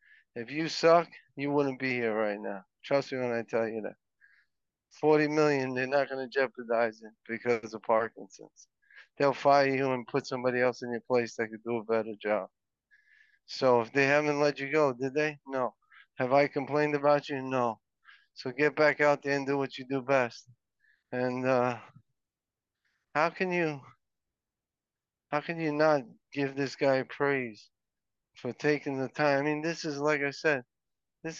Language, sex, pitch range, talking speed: English, male, 125-155 Hz, 180 wpm